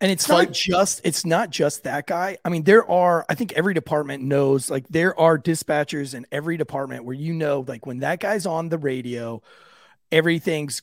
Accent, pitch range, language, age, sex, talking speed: American, 145-190 Hz, English, 30-49, male, 200 wpm